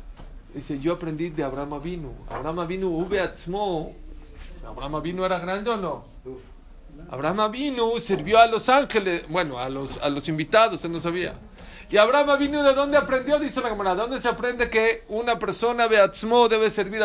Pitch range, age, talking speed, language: 145-205 Hz, 50-69, 170 wpm, Spanish